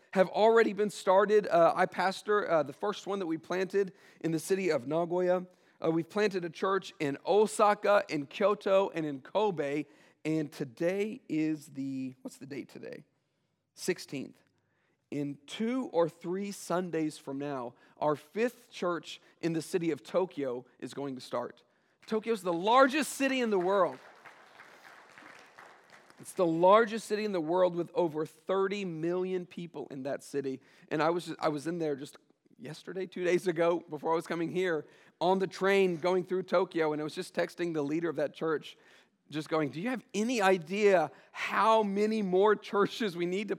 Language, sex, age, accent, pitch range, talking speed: English, male, 40-59, American, 160-205 Hz, 180 wpm